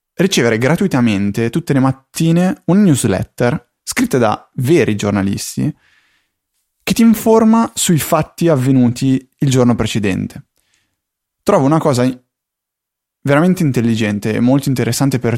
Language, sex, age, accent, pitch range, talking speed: Italian, male, 20-39, native, 110-130 Hz, 115 wpm